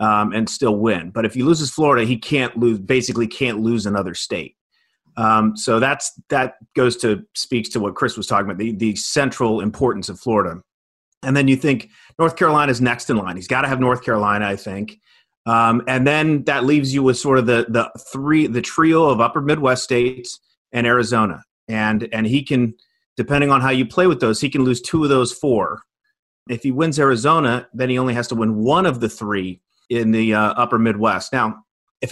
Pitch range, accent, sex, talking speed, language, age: 110-135 Hz, American, male, 210 wpm, English, 30-49